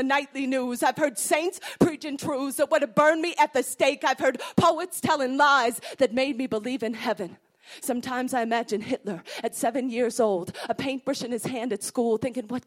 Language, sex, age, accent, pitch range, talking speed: English, female, 30-49, American, 275-345 Hz, 205 wpm